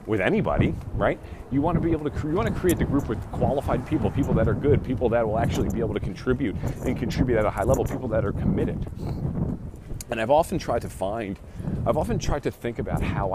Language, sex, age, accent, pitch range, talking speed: English, male, 40-59, American, 95-140 Hz, 240 wpm